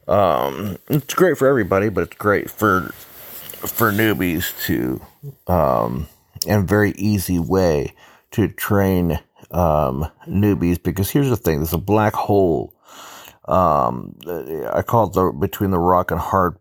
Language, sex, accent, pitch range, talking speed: English, male, American, 80-100 Hz, 140 wpm